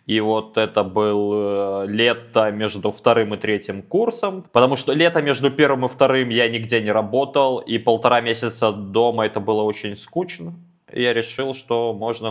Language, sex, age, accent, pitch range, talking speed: Russian, male, 20-39, native, 100-125 Hz, 165 wpm